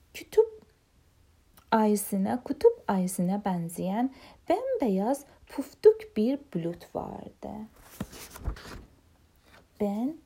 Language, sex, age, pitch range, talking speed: Persian, female, 40-59, 185-260 Hz, 65 wpm